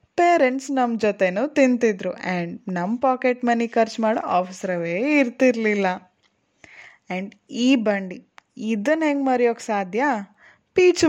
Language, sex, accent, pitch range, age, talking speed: Kannada, female, native, 195-250 Hz, 20-39, 110 wpm